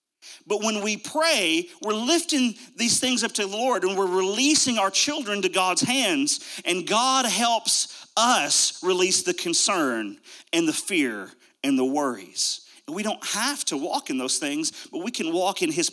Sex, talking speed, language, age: male, 180 wpm, English, 40-59